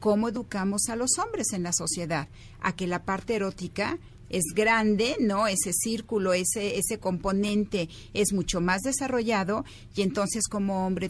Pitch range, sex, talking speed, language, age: 170-210 Hz, female, 155 wpm, Spanish, 40-59